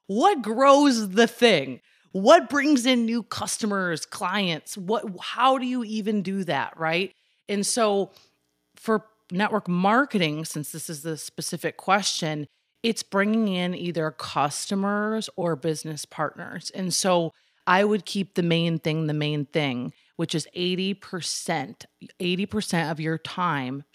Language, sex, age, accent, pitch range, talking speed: English, female, 30-49, American, 155-195 Hz, 140 wpm